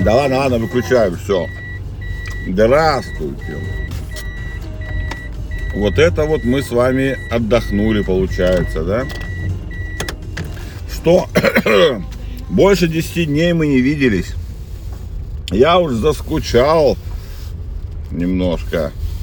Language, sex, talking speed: Russian, male, 85 wpm